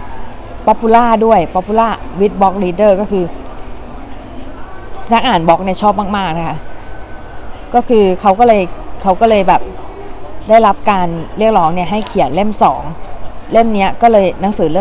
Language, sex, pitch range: Thai, female, 150-205 Hz